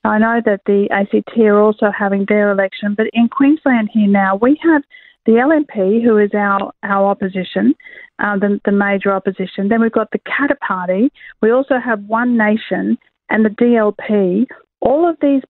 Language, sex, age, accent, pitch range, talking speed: English, female, 40-59, Australian, 200-245 Hz, 180 wpm